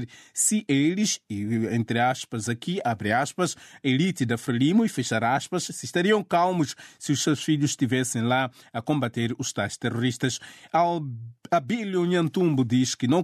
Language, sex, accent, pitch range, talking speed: Portuguese, male, Brazilian, 125-160 Hz, 150 wpm